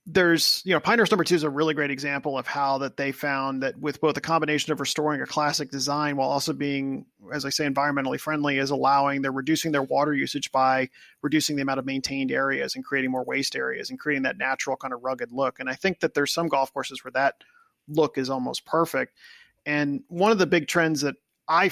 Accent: American